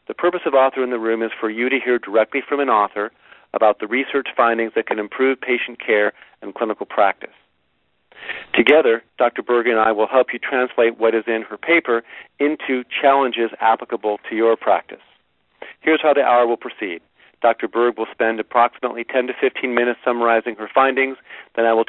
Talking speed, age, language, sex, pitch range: 190 wpm, 50-69, English, male, 110-130 Hz